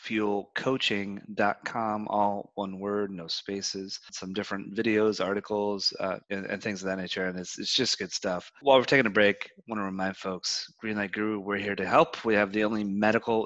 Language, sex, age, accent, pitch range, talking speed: English, male, 30-49, American, 95-110 Hz, 190 wpm